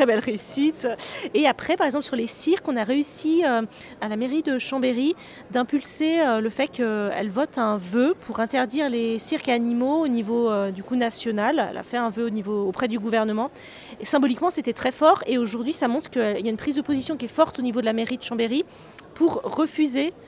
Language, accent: French, French